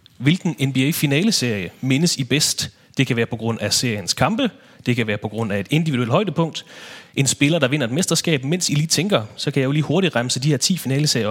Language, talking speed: English, 235 wpm